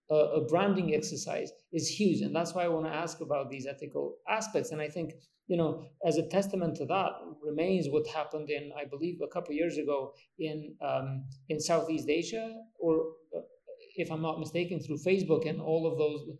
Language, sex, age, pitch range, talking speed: English, male, 50-69, 150-175 Hz, 190 wpm